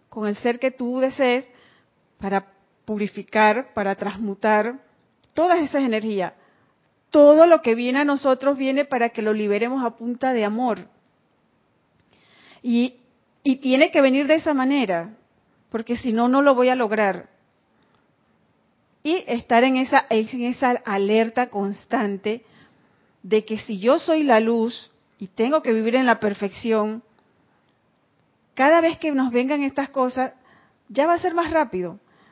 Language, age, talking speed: Spanish, 40-59, 145 wpm